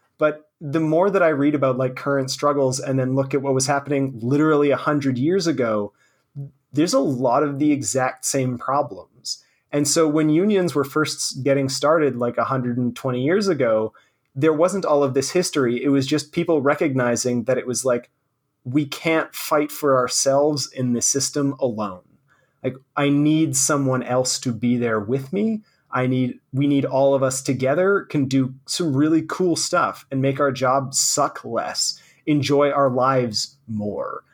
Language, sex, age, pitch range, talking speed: English, male, 30-49, 130-150 Hz, 175 wpm